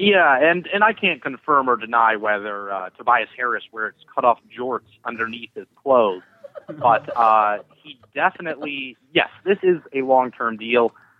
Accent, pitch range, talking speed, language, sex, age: American, 115-145 Hz, 150 wpm, English, male, 30-49